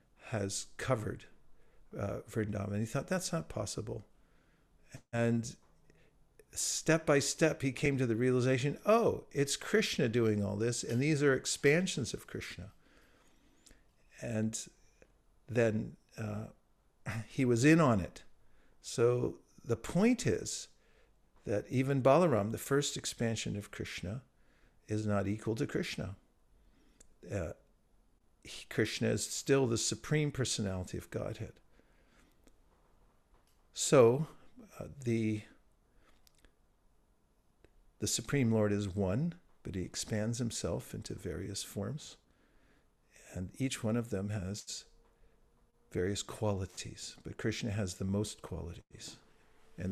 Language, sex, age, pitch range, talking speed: English, male, 50-69, 105-135 Hz, 115 wpm